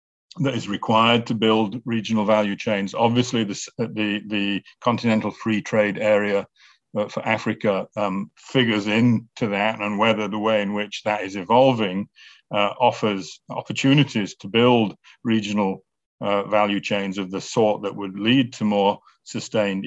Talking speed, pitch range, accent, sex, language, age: 150 wpm, 100-115 Hz, British, male, English, 50-69